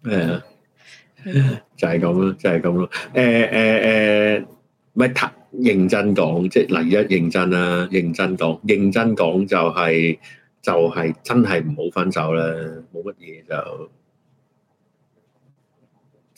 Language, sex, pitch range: Chinese, male, 85-110 Hz